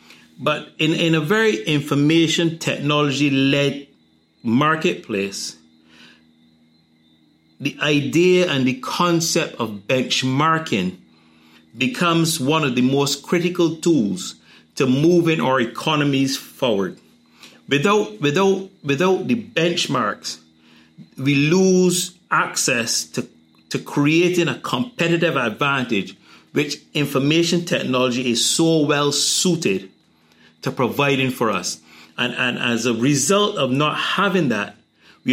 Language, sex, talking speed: English, male, 105 wpm